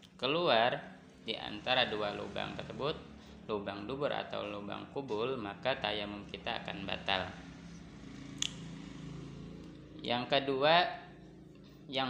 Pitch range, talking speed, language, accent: 90-120 Hz, 95 wpm, Indonesian, native